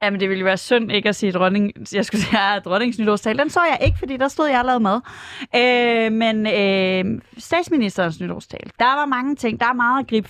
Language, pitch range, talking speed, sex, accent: Danish, 205-265 Hz, 235 wpm, female, native